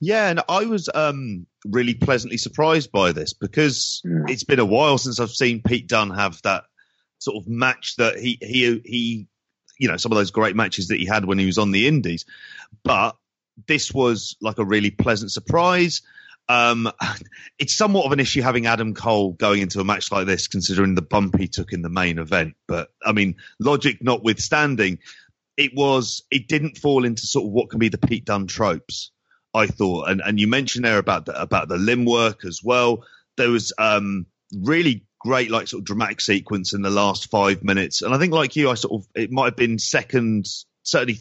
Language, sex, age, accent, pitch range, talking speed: English, male, 30-49, British, 95-125 Hz, 200 wpm